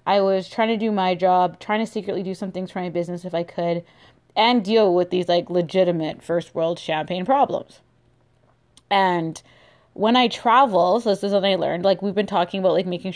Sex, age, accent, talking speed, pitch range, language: female, 20-39, American, 210 wpm, 175-210 Hz, English